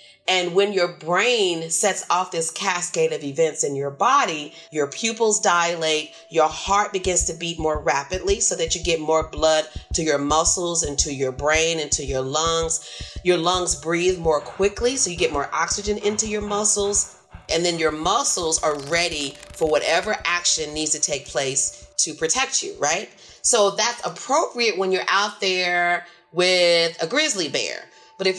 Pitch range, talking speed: 160-205 Hz, 175 wpm